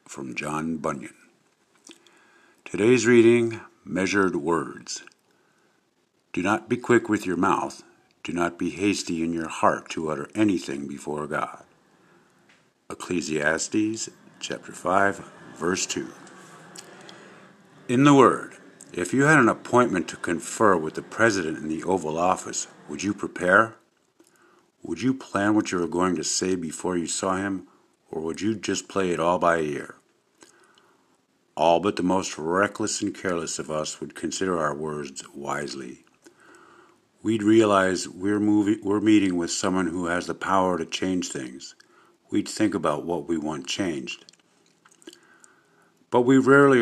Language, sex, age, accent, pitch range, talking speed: English, male, 50-69, American, 85-120 Hz, 145 wpm